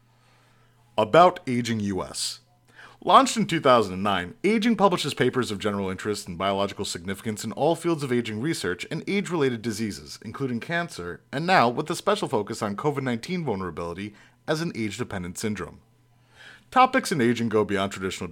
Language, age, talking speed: English, 30-49, 150 wpm